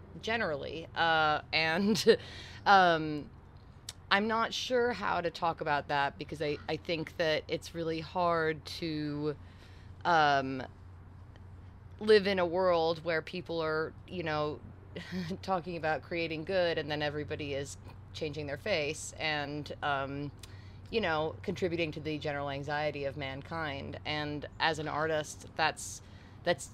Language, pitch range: English, 140-170 Hz